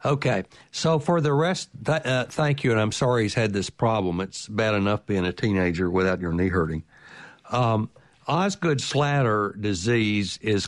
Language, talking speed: English, 165 wpm